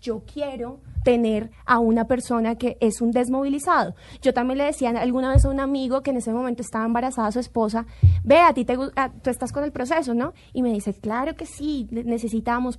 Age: 20-39